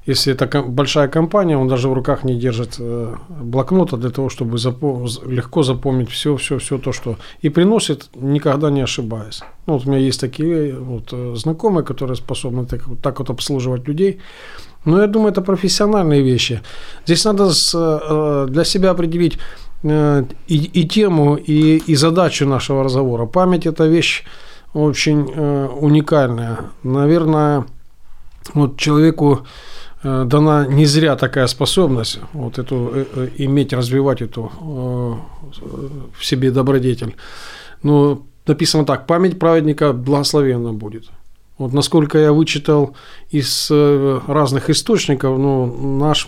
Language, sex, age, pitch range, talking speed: Ukrainian, male, 50-69, 130-155 Hz, 130 wpm